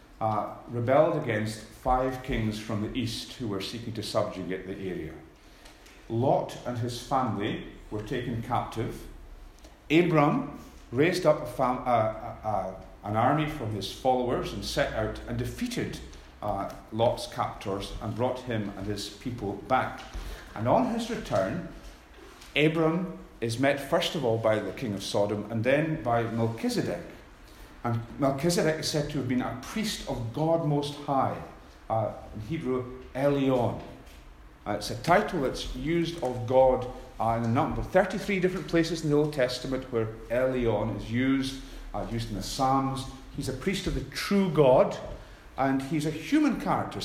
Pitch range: 105-140 Hz